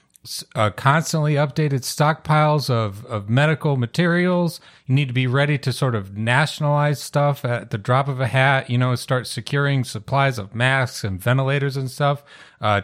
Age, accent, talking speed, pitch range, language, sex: 40-59, American, 170 wpm, 115-140 Hz, English, male